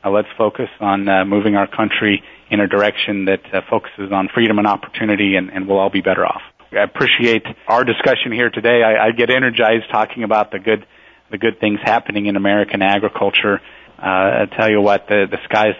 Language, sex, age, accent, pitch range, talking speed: English, male, 40-59, American, 100-115 Hz, 205 wpm